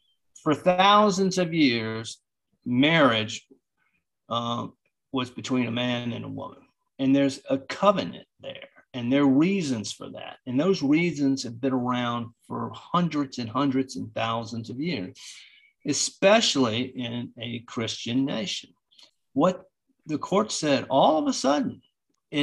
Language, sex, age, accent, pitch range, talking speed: English, male, 50-69, American, 130-215 Hz, 140 wpm